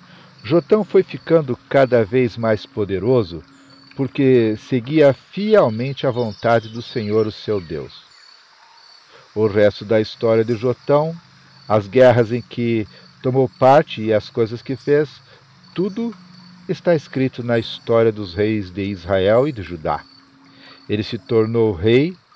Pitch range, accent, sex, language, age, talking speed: 105-145 Hz, Brazilian, male, Portuguese, 50-69, 135 wpm